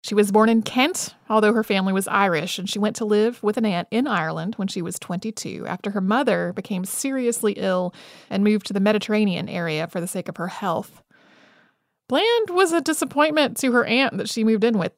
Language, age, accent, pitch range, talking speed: English, 30-49, American, 205-245 Hz, 215 wpm